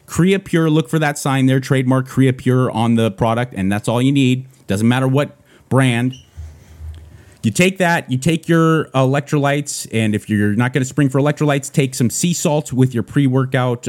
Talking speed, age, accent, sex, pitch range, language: 195 wpm, 30-49, American, male, 110-150 Hz, English